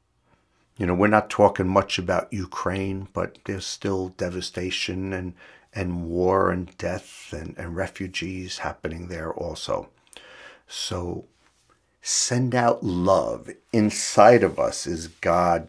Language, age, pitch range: English, 50-69, 85-100 Hz